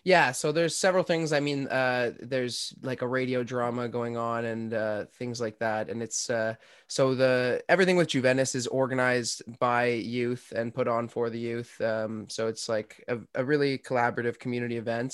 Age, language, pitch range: 20-39, English, 115-130 Hz